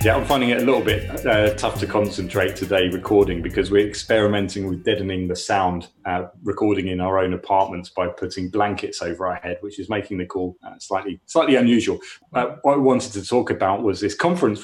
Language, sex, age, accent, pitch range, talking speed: English, male, 30-49, British, 95-105 Hz, 210 wpm